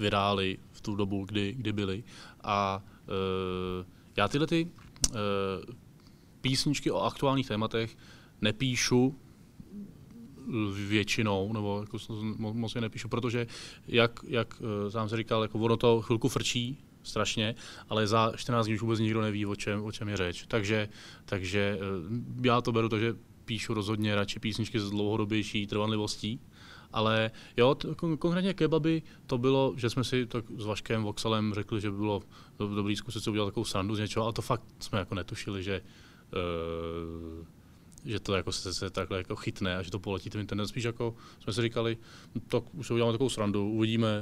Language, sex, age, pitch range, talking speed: Czech, male, 20-39, 100-115 Hz, 170 wpm